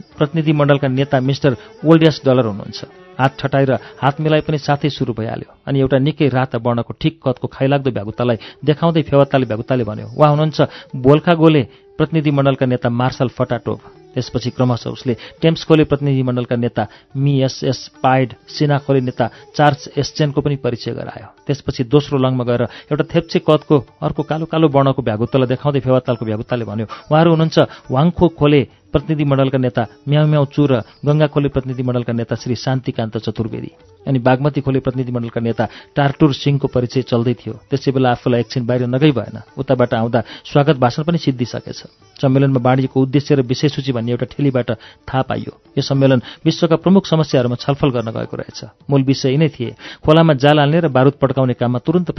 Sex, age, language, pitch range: male, 40-59, German, 125-150 Hz